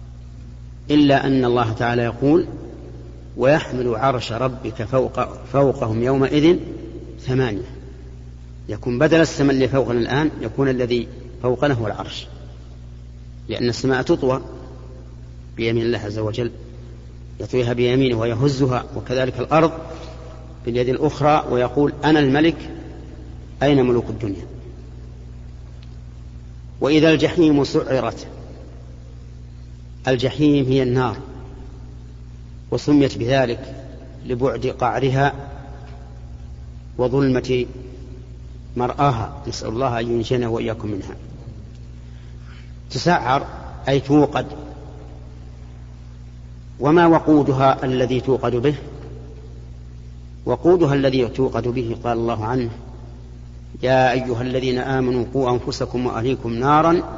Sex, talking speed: male, 85 wpm